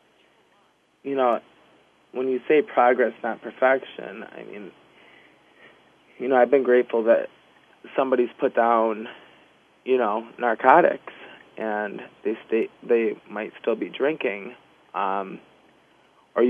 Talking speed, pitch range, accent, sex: 115 wpm, 115-125 Hz, American, male